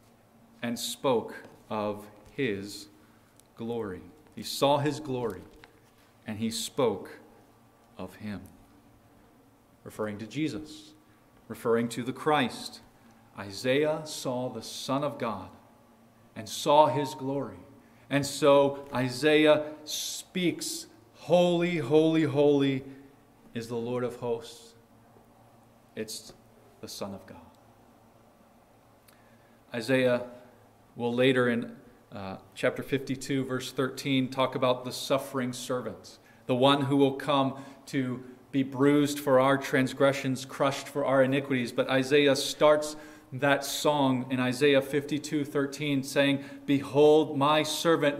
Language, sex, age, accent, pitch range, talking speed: English, male, 40-59, American, 115-145 Hz, 110 wpm